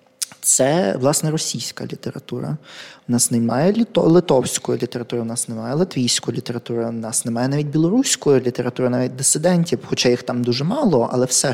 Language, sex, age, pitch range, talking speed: Ukrainian, male, 20-39, 125-155 Hz, 150 wpm